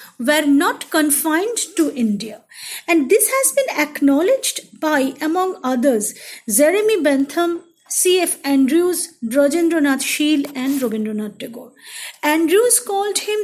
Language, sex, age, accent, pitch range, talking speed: Bengali, female, 50-69, native, 260-355 Hz, 110 wpm